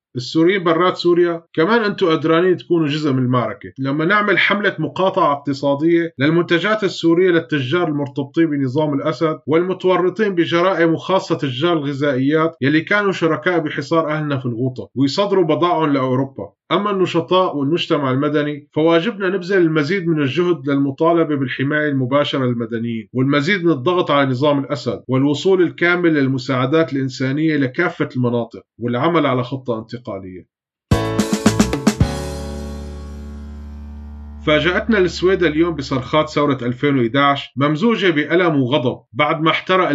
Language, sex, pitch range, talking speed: Arabic, male, 130-170 Hz, 115 wpm